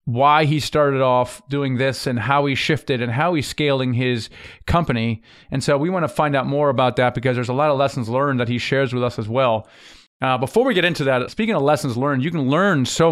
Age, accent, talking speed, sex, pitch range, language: 30-49, American, 245 wpm, male, 130-155 Hz, English